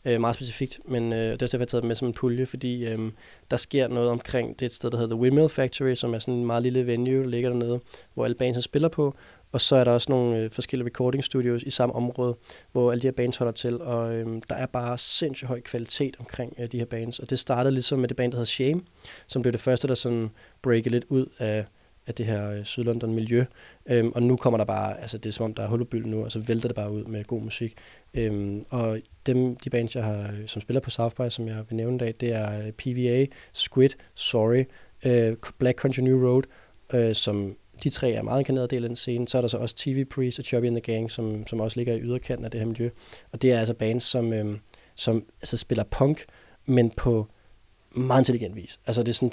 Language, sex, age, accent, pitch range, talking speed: Danish, male, 20-39, native, 115-125 Hz, 250 wpm